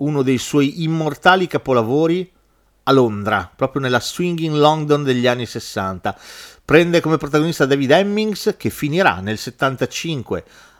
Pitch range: 110-170 Hz